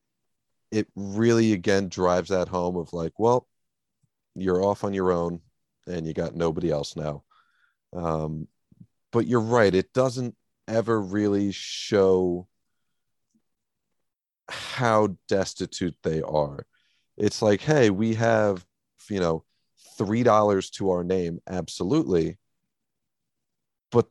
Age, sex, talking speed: 40-59, male, 115 wpm